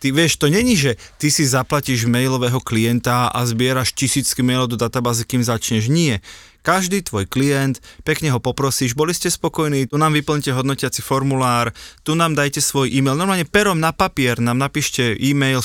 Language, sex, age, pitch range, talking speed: Slovak, male, 20-39, 125-155 Hz, 175 wpm